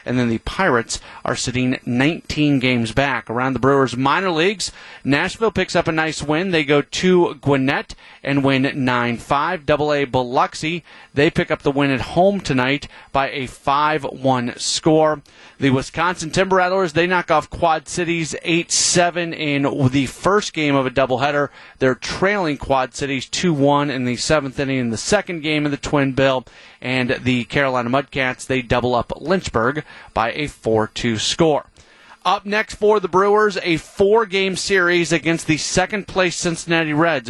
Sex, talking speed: male, 160 wpm